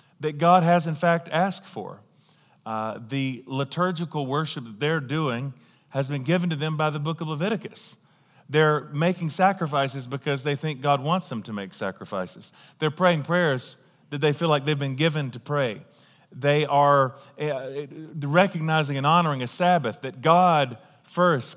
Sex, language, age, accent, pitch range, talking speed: male, English, 40-59, American, 145-180 Hz, 165 wpm